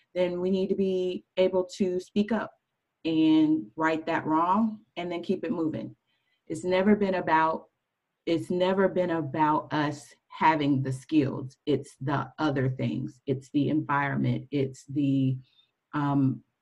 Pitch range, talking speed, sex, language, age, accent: 140-165 Hz, 145 wpm, female, English, 40-59, American